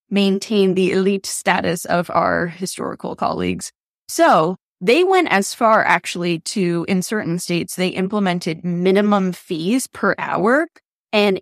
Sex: female